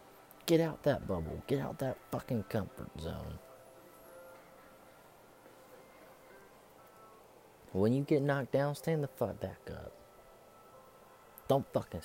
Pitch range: 90-130 Hz